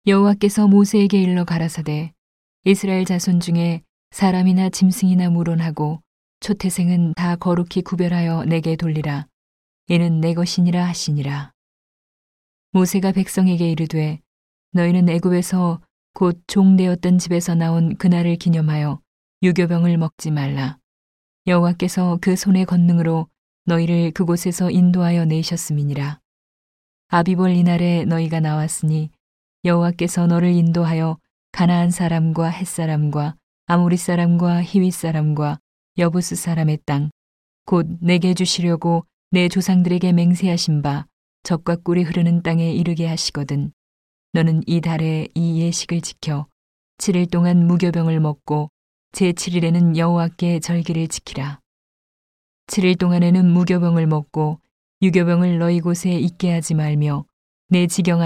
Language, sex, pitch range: Korean, female, 160-180 Hz